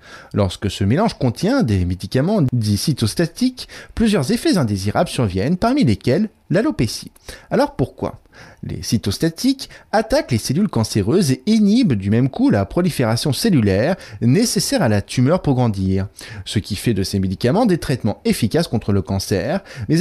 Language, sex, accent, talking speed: French, male, French, 150 wpm